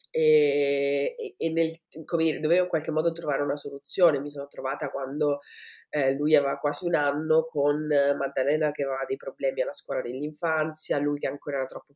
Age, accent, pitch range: 30-49, native, 145-185 Hz